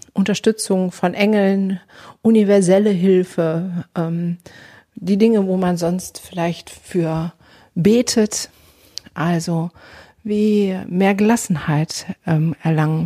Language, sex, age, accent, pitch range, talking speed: German, female, 50-69, German, 165-200 Hz, 90 wpm